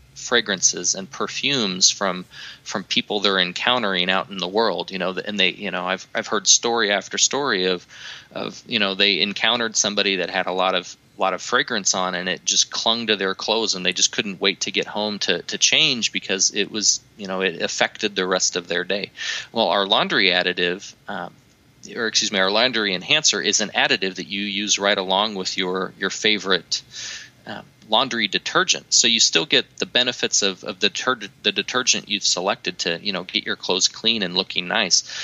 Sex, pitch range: male, 90-105 Hz